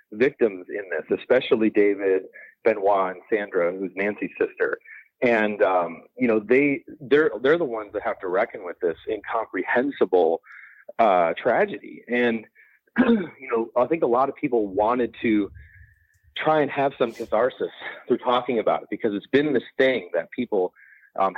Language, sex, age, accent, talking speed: English, male, 30-49, American, 160 wpm